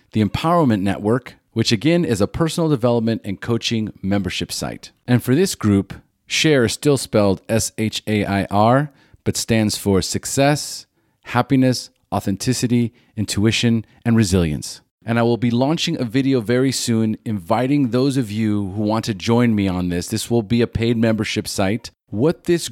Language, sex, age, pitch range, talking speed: English, male, 30-49, 100-120 Hz, 160 wpm